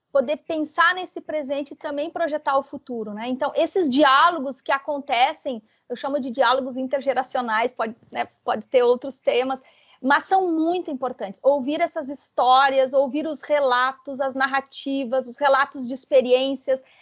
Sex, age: female, 30-49